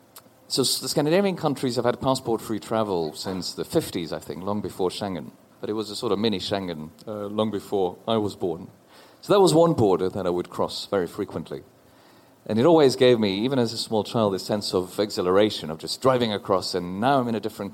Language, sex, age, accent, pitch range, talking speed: English, male, 40-59, British, 100-125 Hz, 220 wpm